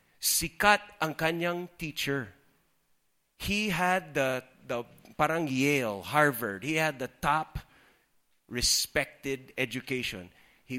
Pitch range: 130-180 Hz